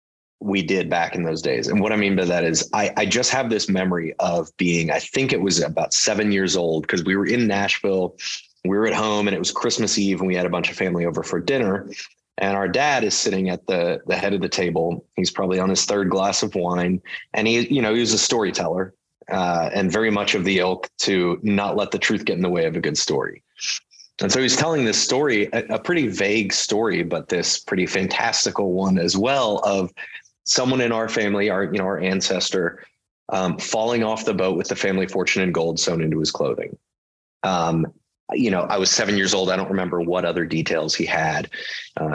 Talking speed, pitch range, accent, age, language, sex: 230 wpm, 90-105 Hz, American, 20-39, English, male